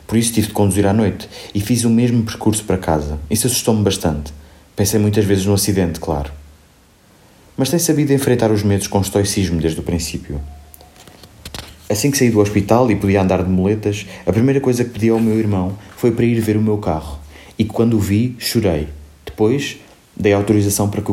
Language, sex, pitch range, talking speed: Portuguese, male, 85-110 Hz, 195 wpm